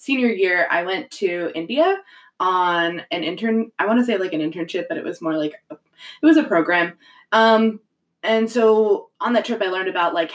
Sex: female